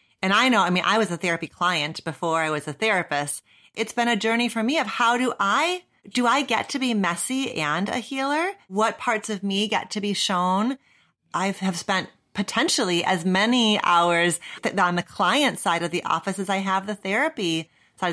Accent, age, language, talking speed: American, 30-49, English, 210 wpm